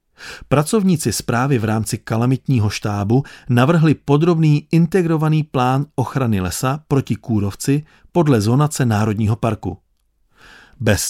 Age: 40-59